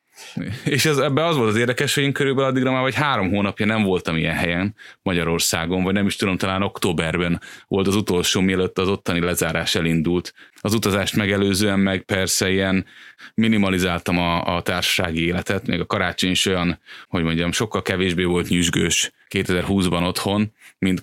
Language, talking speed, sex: Hungarian, 165 wpm, male